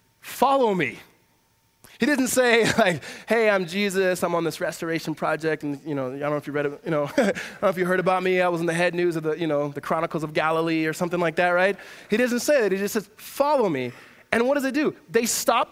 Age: 20-39